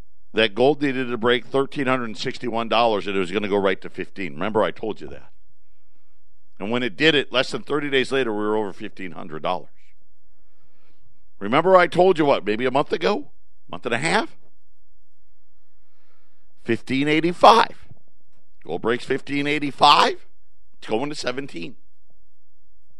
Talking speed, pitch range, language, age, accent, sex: 170 wpm, 100-130 Hz, English, 50-69, American, male